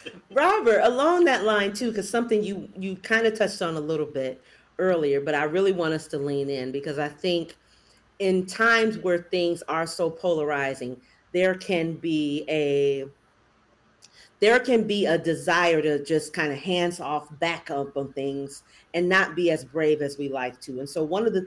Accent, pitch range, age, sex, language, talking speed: American, 150-205 Hz, 40-59, female, English, 190 wpm